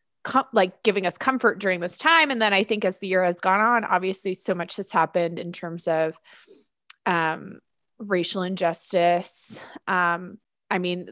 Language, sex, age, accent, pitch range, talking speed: English, female, 20-39, American, 175-205 Hz, 165 wpm